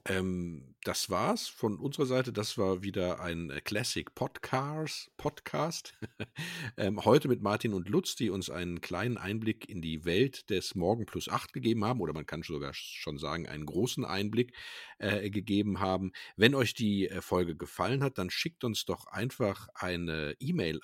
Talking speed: 155 wpm